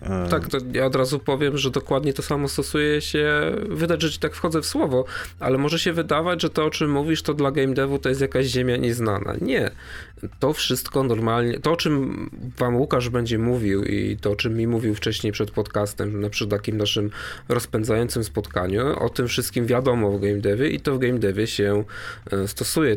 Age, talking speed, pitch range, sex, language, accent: 20-39, 200 wpm, 105-130 Hz, male, Polish, native